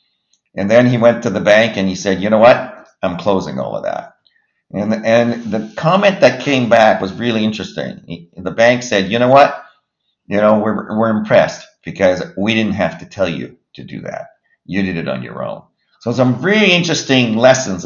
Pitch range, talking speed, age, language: 95-130 Hz, 210 wpm, 50-69, English